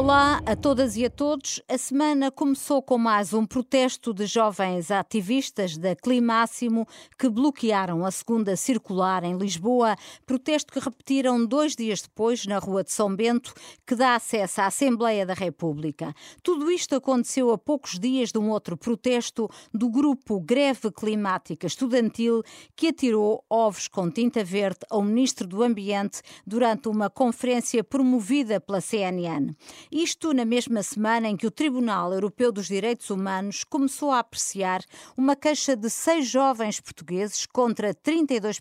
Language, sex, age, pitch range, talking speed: Portuguese, female, 50-69, 205-260 Hz, 150 wpm